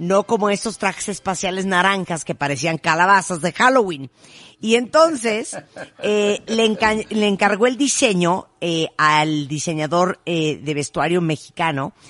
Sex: female